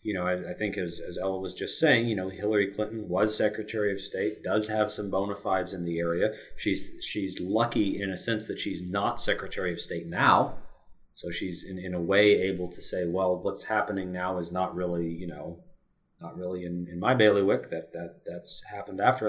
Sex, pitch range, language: male, 90-120 Hz, English